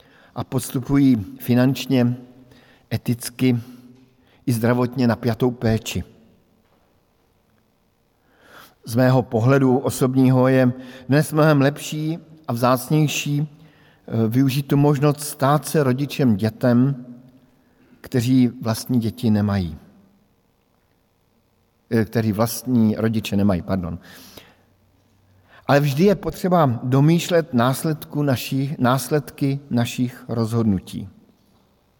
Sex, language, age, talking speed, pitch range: male, Slovak, 50-69, 80 wpm, 120-145 Hz